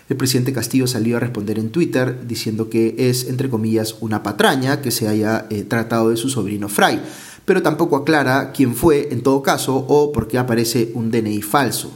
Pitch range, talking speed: 115-140 Hz, 195 wpm